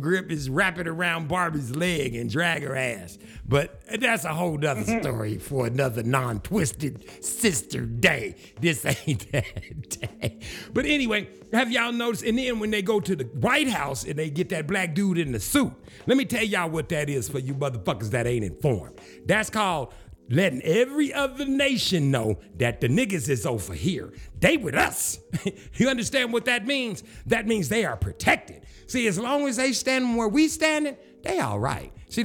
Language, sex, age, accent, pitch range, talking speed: English, male, 60-79, American, 130-210 Hz, 190 wpm